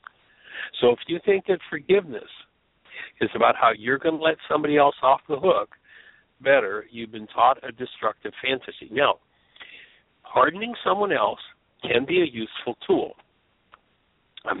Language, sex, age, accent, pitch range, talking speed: English, male, 60-79, American, 140-200 Hz, 145 wpm